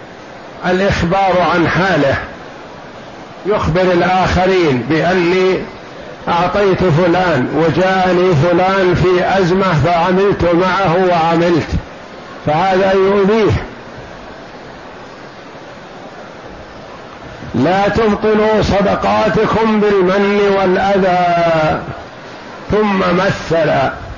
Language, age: Arabic, 50-69